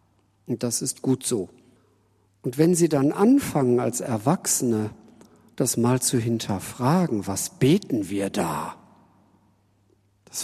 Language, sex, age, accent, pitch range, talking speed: German, male, 50-69, German, 110-165 Hz, 120 wpm